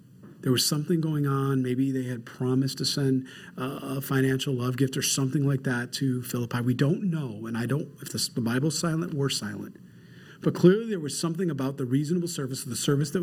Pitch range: 125-165 Hz